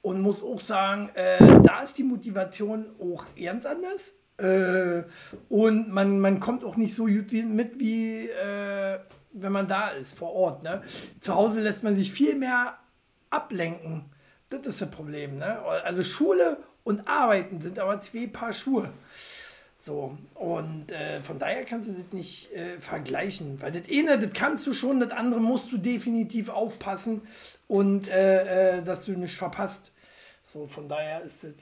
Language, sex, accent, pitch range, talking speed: German, male, German, 175-225 Hz, 170 wpm